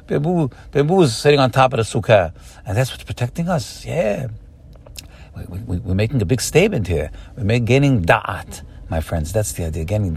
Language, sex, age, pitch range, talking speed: English, male, 60-79, 95-135 Hz, 185 wpm